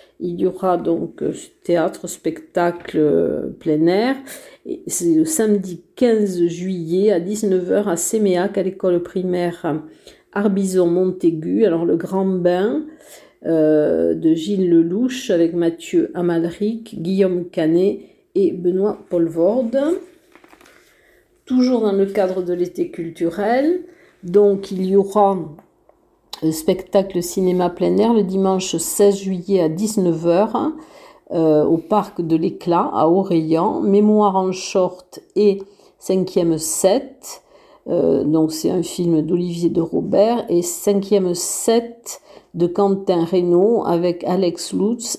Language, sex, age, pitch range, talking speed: French, female, 50-69, 175-210 Hz, 120 wpm